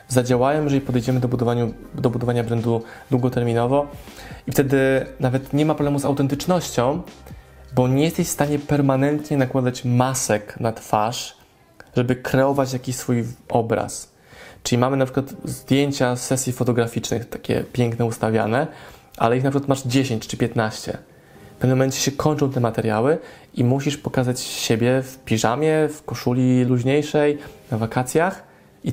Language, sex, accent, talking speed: Polish, male, native, 145 wpm